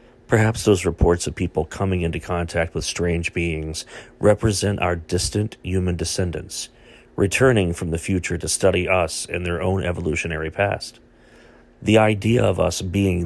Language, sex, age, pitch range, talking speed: English, male, 40-59, 85-105 Hz, 150 wpm